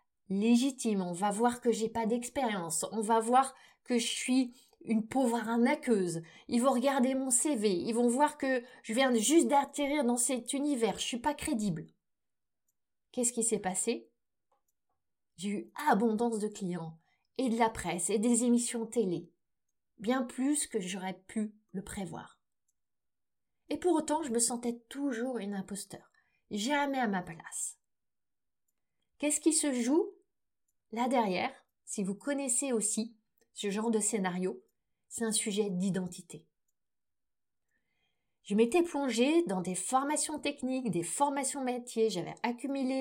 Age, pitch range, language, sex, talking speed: 30-49, 210-260 Hz, French, female, 145 wpm